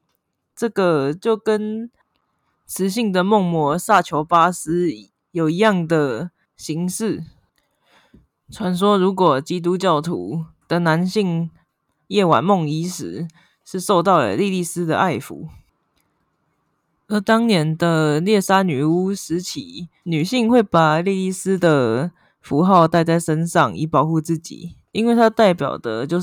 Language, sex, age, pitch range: Chinese, female, 20-39, 160-195 Hz